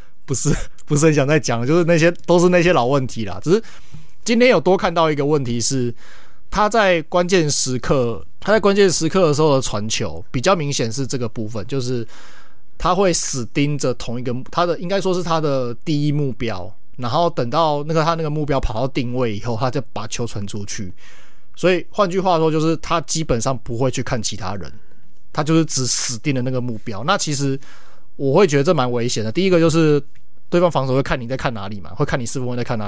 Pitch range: 120-165 Hz